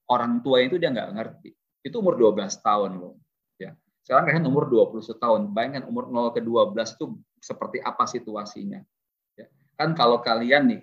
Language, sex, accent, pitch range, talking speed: Indonesian, male, native, 115-160 Hz, 170 wpm